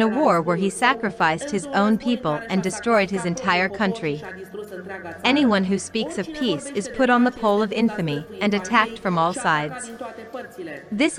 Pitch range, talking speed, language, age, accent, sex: 190-235 Hz, 165 wpm, English, 40-59, American, female